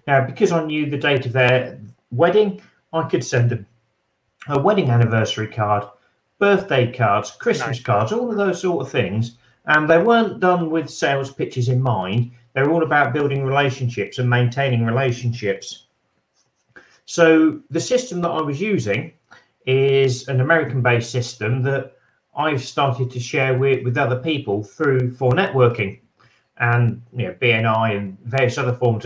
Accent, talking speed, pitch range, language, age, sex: British, 155 wpm, 120-145 Hz, English, 40-59, male